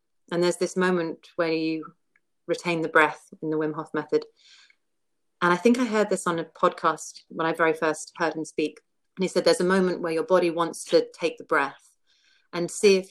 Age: 40-59